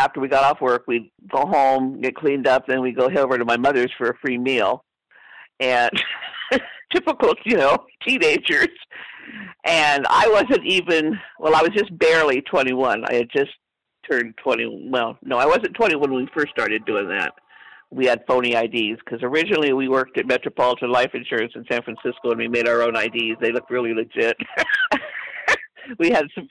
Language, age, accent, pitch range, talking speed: English, 50-69, American, 130-185 Hz, 185 wpm